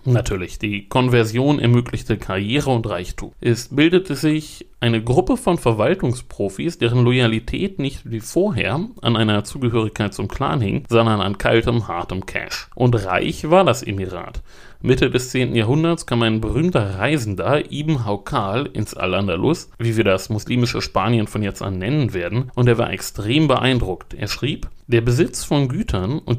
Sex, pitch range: male, 110-145 Hz